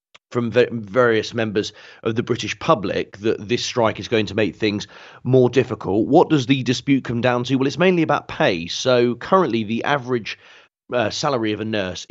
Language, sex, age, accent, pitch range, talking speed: English, male, 30-49, British, 100-125 Hz, 190 wpm